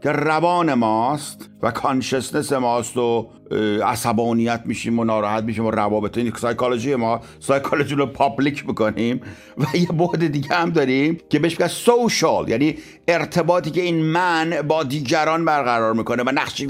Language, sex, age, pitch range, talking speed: Persian, male, 60-79, 115-155 Hz, 150 wpm